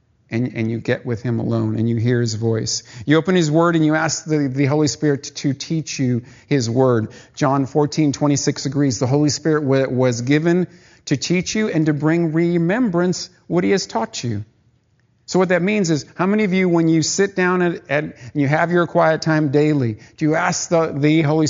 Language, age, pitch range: English, 50-69, 120-165 Hz